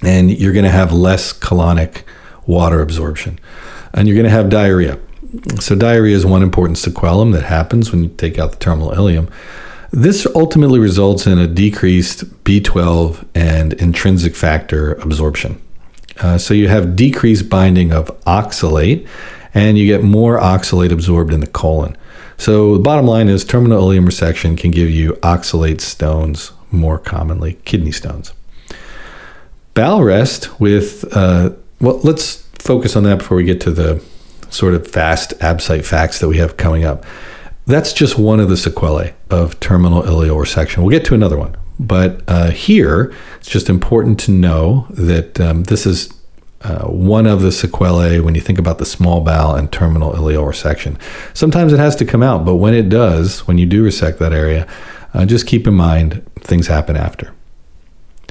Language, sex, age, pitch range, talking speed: English, male, 40-59, 80-105 Hz, 170 wpm